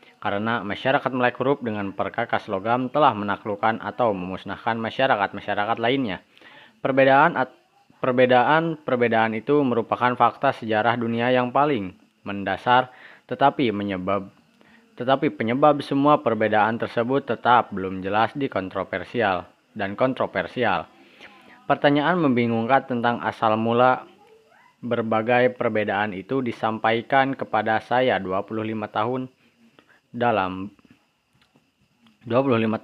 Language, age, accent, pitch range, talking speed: Indonesian, 20-39, native, 110-135 Hz, 95 wpm